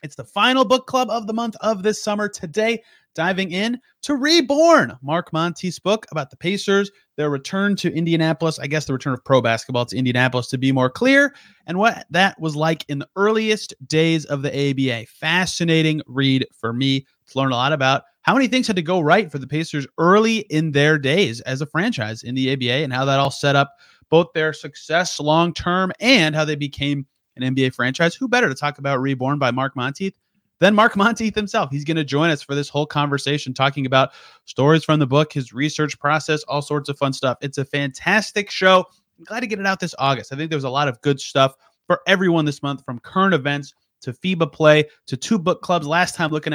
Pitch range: 135-185 Hz